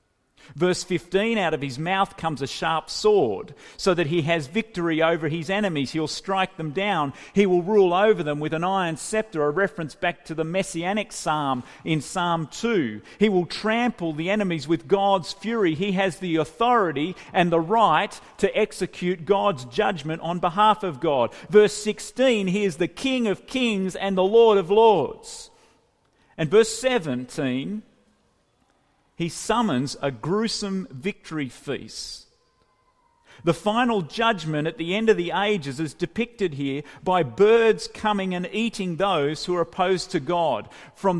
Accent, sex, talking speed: Australian, male, 160 wpm